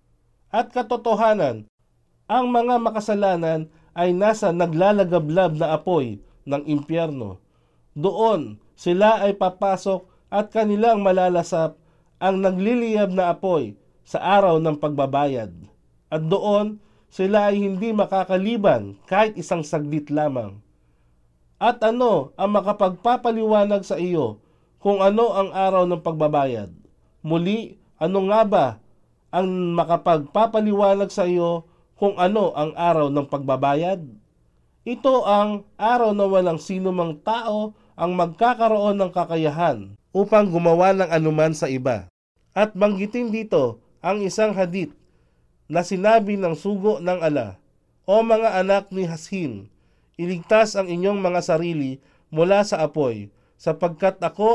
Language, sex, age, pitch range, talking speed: Filipino, male, 50-69, 155-205 Hz, 120 wpm